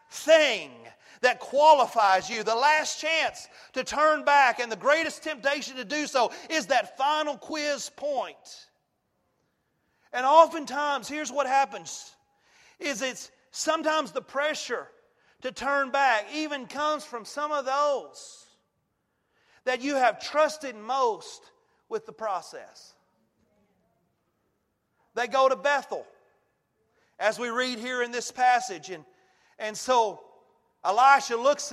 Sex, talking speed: male, 115 wpm